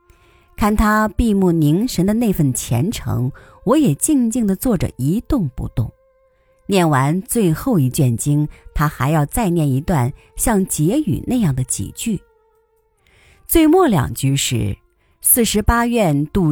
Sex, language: female, Chinese